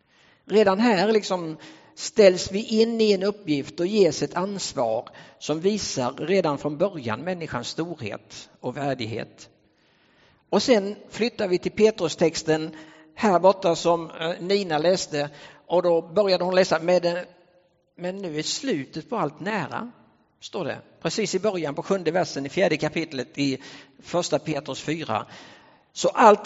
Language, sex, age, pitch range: English, male, 50-69, 155-195 Hz